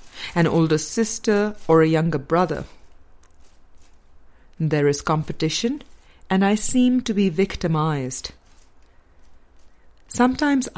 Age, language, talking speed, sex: 50-69, English, 95 wpm, female